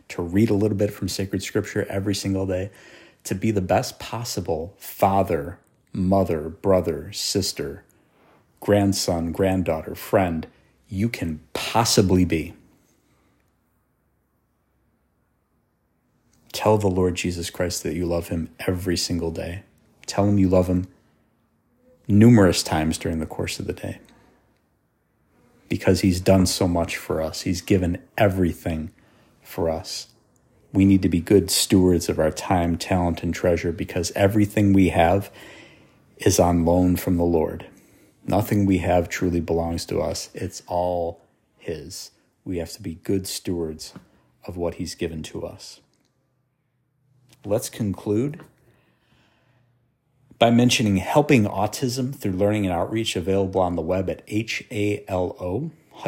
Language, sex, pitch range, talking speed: English, male, 90-105 Hz, 135 wpm